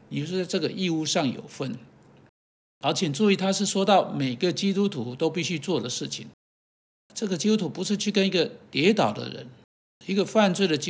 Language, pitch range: Chinese, 155-205 Hz